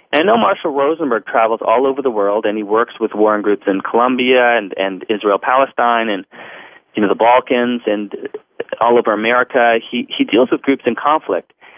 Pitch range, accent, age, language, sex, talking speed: 100-140 Hz, American, 30-49, English, male, 185 wpm